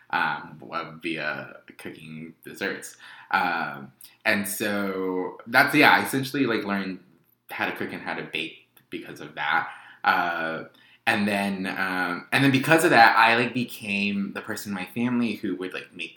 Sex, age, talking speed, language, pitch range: male, 20-39, 165 wpm, English, 90-110 Hz